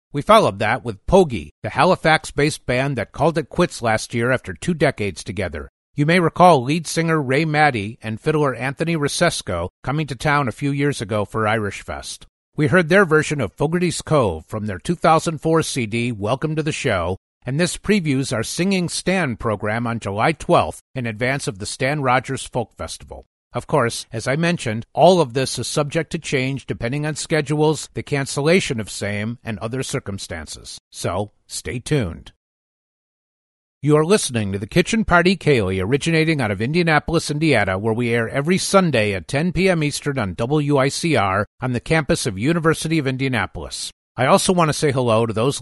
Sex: male